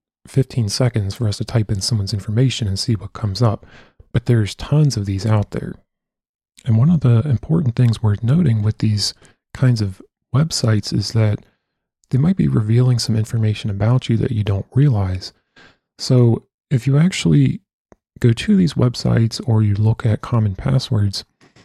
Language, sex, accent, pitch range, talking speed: English, male, American, 105-120 Hz, 170 wpm